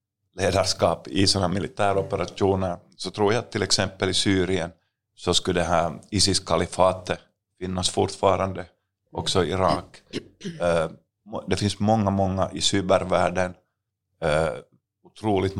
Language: Swedish